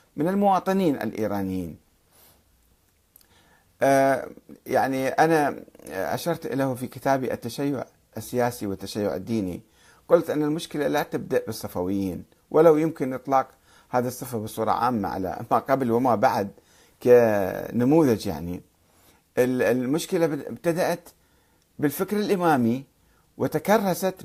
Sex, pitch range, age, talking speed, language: male, 95-140 Hz, 50-69, 95 wpm, Arabic